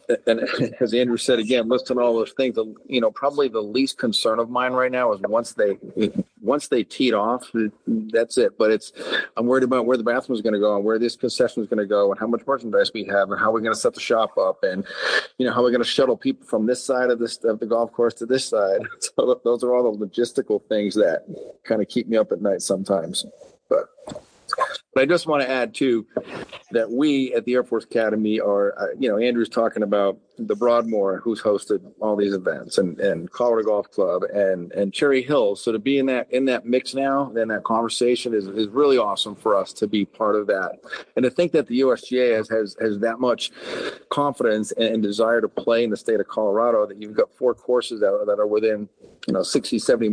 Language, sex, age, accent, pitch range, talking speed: English, male, 40-59, American, 110-140 Hz, 235 wpm